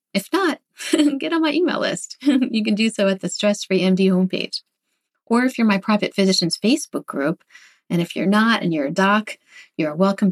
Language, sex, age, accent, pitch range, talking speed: English, female, 30-49, American, 185-235 Hz, 200 wpm